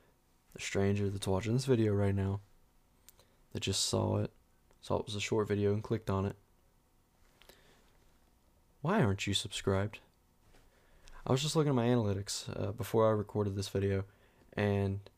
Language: English